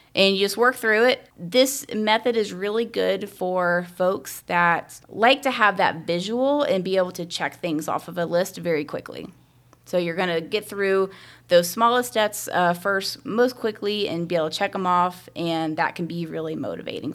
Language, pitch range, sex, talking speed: English, 170-220 Hz, female, 200 wpm